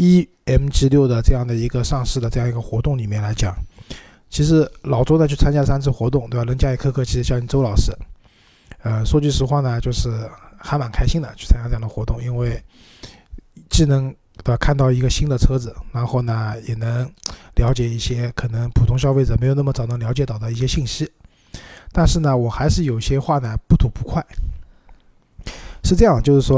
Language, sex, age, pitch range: Chinese, male, 20-39, 115-135 Hz